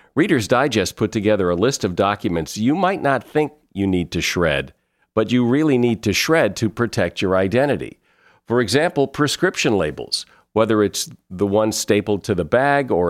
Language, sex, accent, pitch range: English, male, American, 95-135 Hz